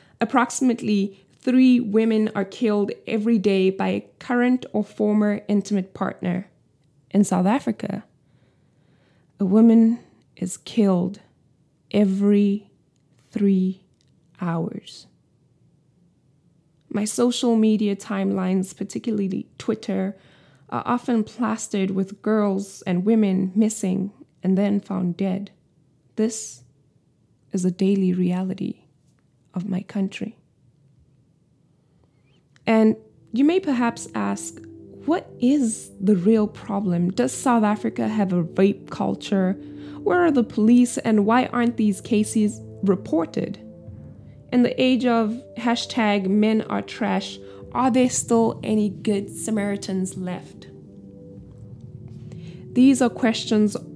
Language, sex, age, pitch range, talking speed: English, female, 20-39, 165-225 Hz, 105 wpm